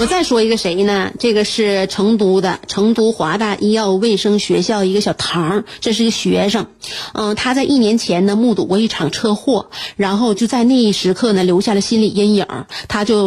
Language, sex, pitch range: Chinese, female, 190-265 Hz